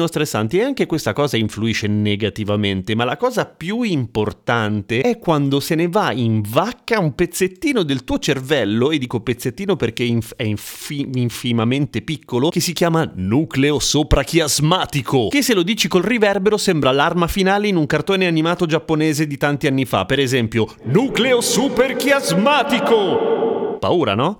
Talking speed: 150 wpm